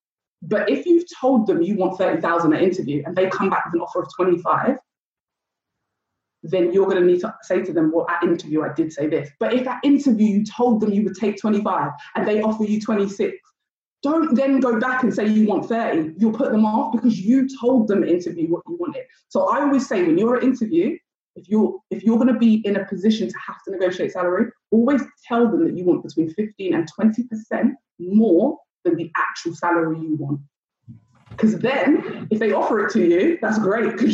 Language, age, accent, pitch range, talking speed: English, 20-39, British, 180-240 Hz, 215 wpm